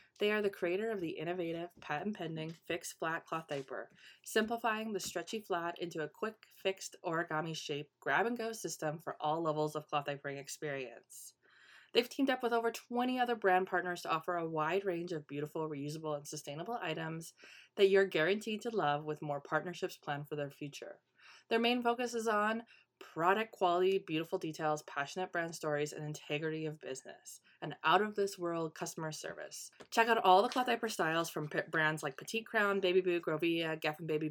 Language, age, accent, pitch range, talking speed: English, 20-39, American, 155-200 Hz, 175 wpm